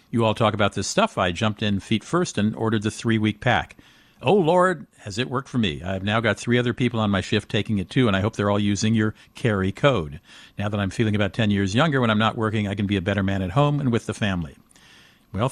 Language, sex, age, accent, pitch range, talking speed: English, male, 50-69, American, 100-130 Hz, 265 wpm